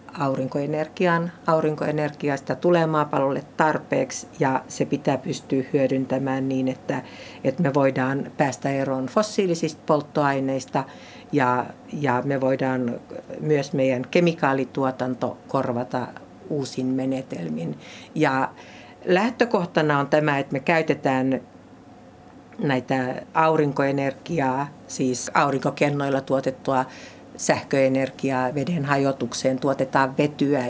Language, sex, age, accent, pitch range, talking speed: Finnish, female, 60-79, native, 130-155 Hz, 90 wpm